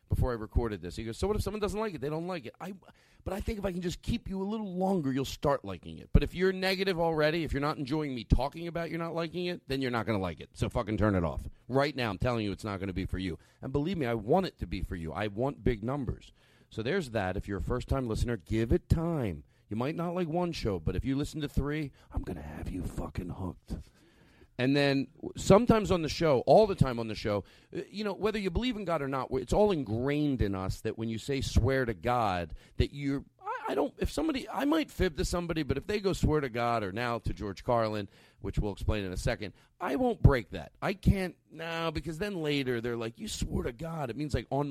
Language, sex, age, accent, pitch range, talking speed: English, male, 40-59, American, 105-160 Hz, 270 wpm